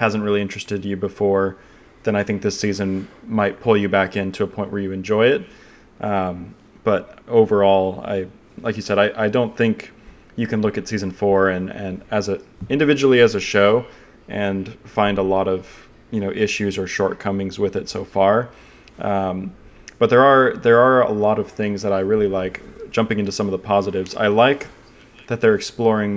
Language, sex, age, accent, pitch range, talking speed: English, male, 20-39, American, 95-110 Hz, 195 wpm